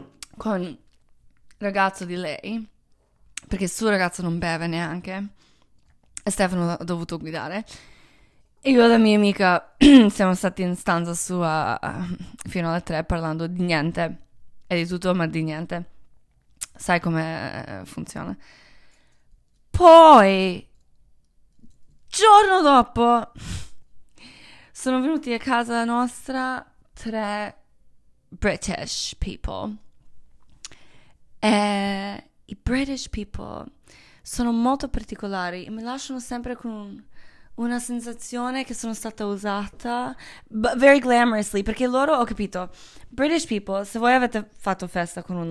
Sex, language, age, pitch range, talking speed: female, Italian, 20-39, 175-240 Hz, 115 wpm